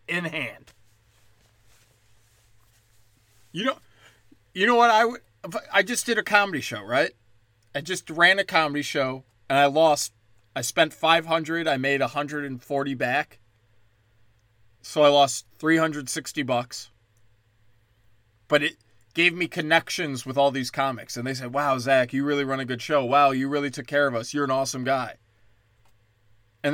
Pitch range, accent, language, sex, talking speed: 110-160 Hz, American, English, male, 155 wpm